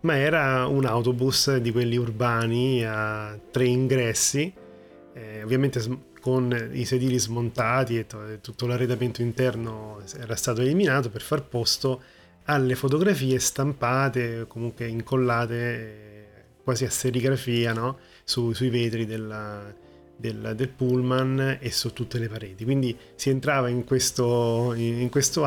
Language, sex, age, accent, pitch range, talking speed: Italian, male, 30-49, native, 110-130 Hz, 120 wpm